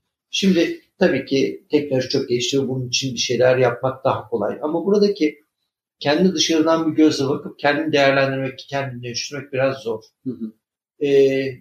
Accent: native